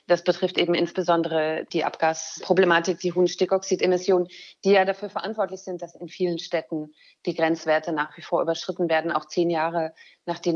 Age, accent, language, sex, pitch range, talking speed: 30-49, German, German, female, 170-195 Hz, 160 wpm